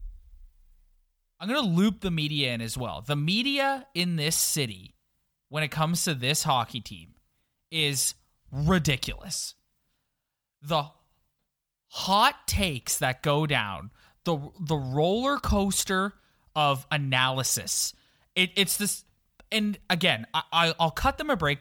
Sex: male